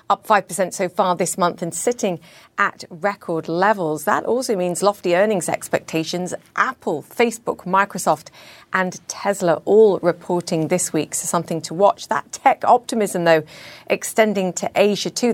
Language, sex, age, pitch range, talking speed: English, female, 40-59, 170-210 Hz, 150 wpm